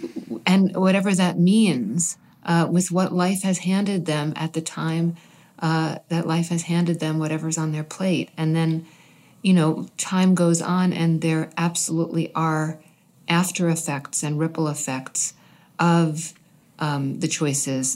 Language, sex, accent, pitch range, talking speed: English, female, American, 150-180 Hz, 145 wpm